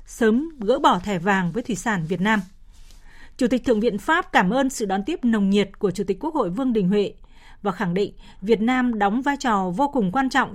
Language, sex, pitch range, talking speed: Vietnamese, female, 200-255 Hz, 240 wpm